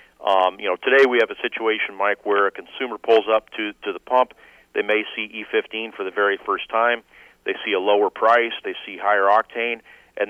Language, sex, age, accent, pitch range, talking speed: English, male, 40-59, American, 95-115 Hz, 215 wpm